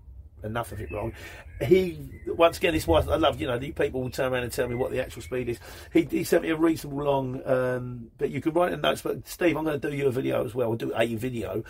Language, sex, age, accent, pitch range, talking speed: English, male, 40-59, British, 115-140 Hz, 280 wpm